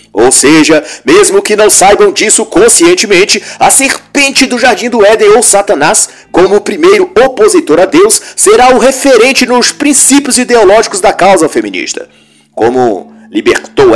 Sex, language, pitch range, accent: male, Portuguese, 230-365 Hz, Brazilian